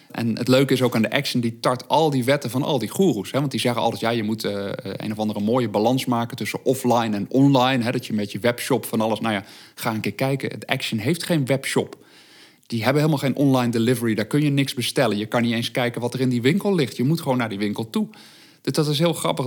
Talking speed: 265 wpm